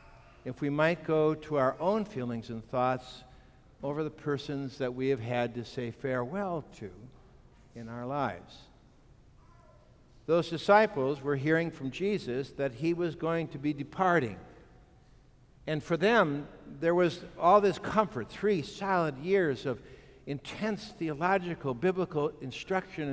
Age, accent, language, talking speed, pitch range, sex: 60-79, American, English, 140 wpm, 140-195 Hz, male